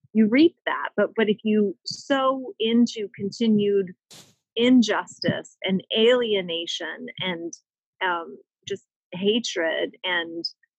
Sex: female